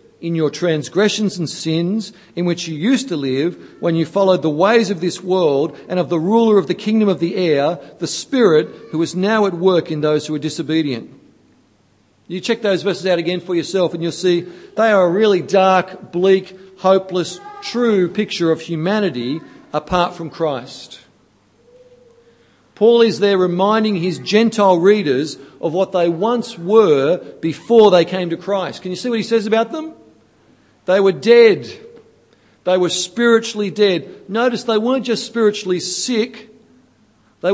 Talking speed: 170 wpm